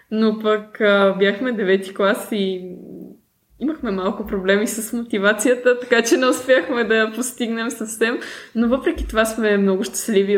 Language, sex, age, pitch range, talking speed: Bulgarian, female, 20-39, 190-235 Hz, 150 wpm